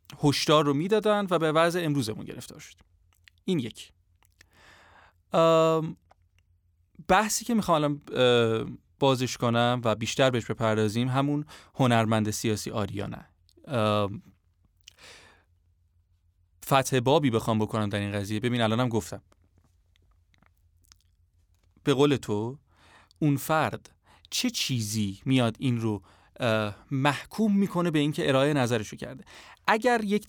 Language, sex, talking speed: Persian, male, 105 wpm